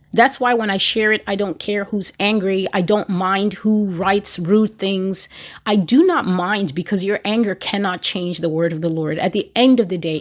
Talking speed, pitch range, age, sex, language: 225 wpm, 180-230 Hz, 30-49, female, English